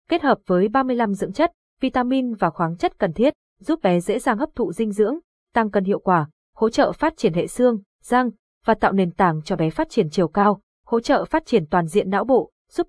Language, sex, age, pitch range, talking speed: Vietnamese, female, 20-39, 190-245 Hz, 235 wpm